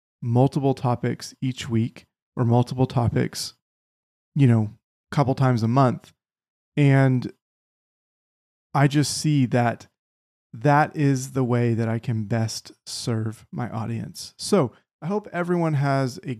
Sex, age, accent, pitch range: male, 30-49, American, 115-135 Hz